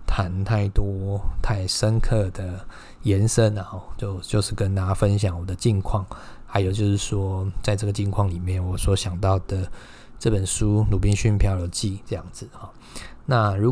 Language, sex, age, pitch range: Chinese, male, 20-39, 95-110 Hz